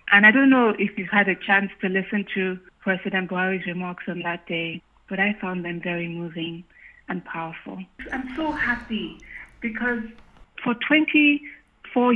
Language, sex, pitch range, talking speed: English, female, 190-225 Hz, 160 wpm